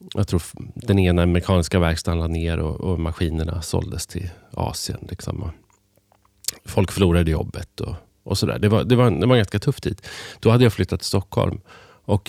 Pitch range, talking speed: 85-105 Hz, 170 wpm